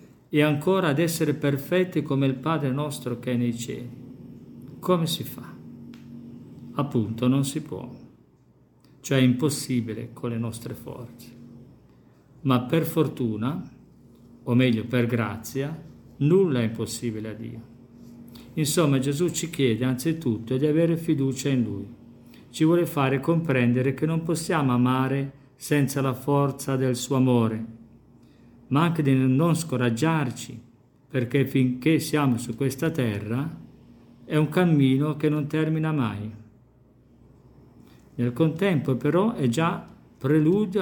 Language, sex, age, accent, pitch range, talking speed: Italian, male, 50-69, native, 120-155 Hz, 130 wpm